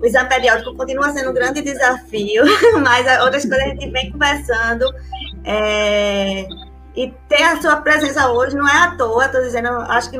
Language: Portuguese